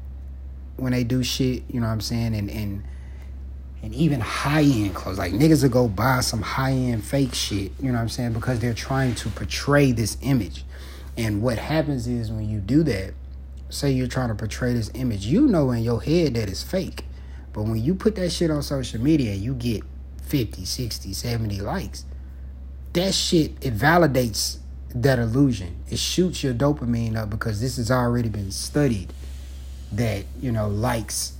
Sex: male